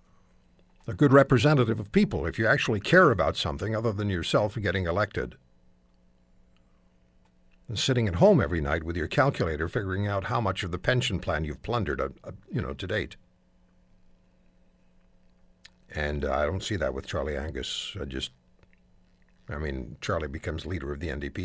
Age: 60-79